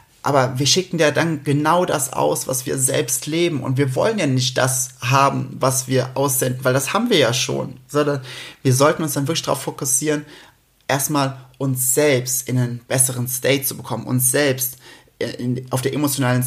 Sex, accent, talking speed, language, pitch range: male, German, 180 wpm, German, 125-145 Hz